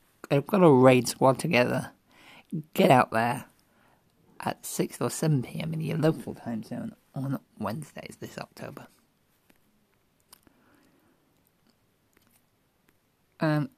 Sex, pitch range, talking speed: male, 125-155 Hz, 100 wpm